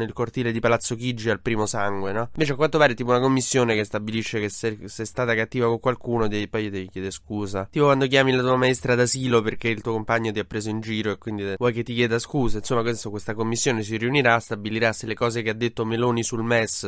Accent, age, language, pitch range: native, 20-39, Italian, 110-135 Hz